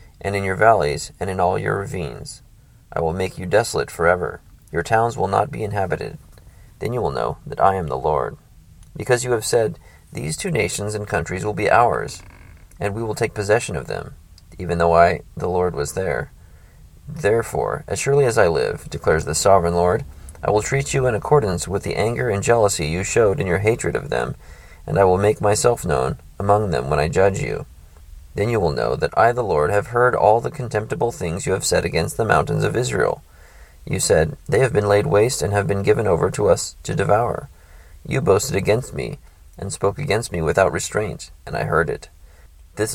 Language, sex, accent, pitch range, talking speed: English, male, American, 80-105 Hz, 210 wpm